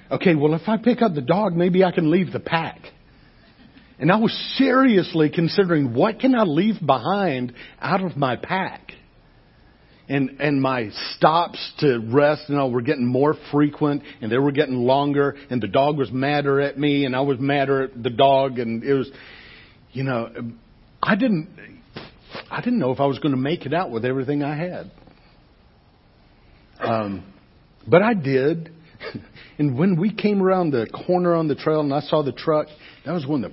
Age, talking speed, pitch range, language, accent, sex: 50-69, 190 wpm, 125-160 Hz, English, American, male